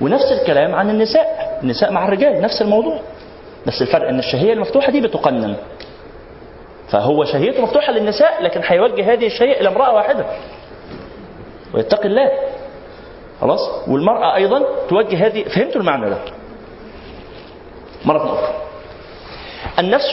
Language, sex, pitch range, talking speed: Arabic, male, 205-280 Hz, 120 wpm